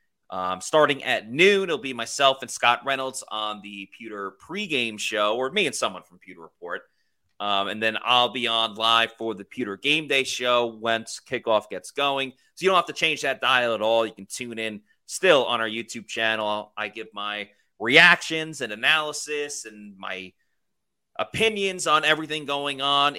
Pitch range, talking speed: 110-155 Hz, 185 wpm